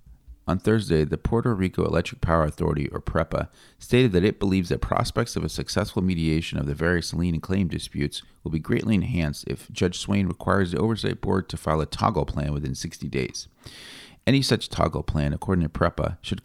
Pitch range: 80-95 Hz